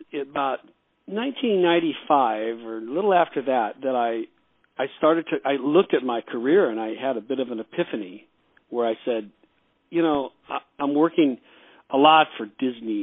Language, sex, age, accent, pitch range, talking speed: English, male, 50-69, American, 120-155 Hz, 170 wpm